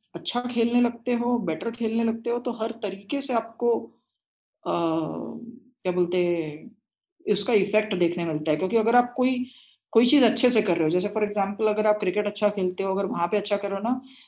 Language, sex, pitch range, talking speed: Hindi, female, 205-255 Hz, 200 wpm